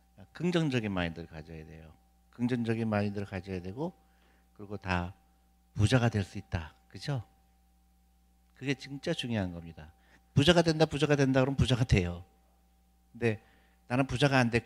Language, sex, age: Korean, male, 50-69